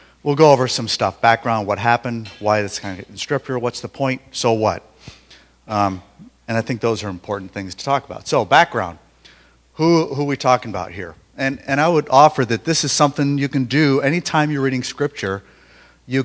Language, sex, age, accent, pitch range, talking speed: English, male, 50-69, American, 100-130 Hz, 210 wpm